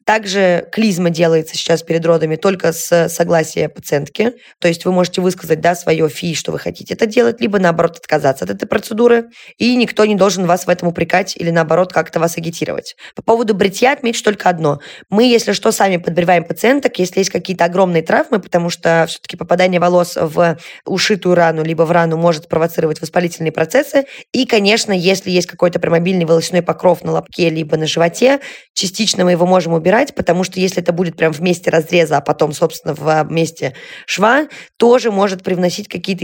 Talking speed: 180 wpm